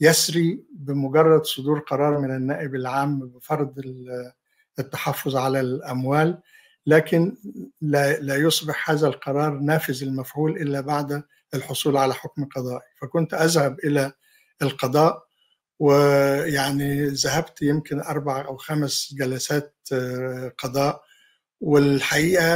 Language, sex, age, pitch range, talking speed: Arabic, male, 50-69, 135-155 Hz, 100 wpm